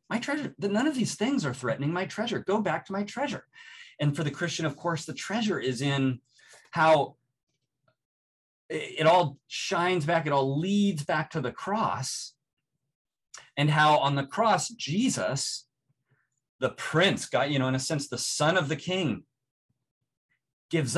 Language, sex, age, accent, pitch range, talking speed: English, male, 30-49, American, 135-205 Hz, 165 wpm